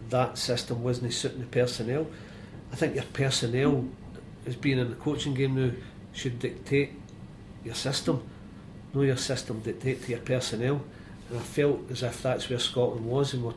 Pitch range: 120-150 Hz